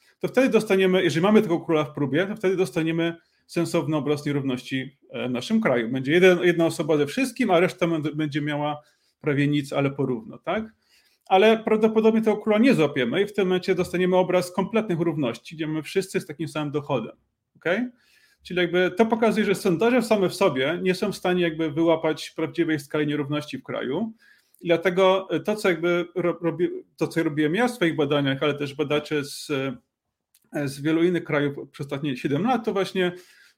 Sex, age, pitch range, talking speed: male, 30-49, 150-195 Hz, 180 wpm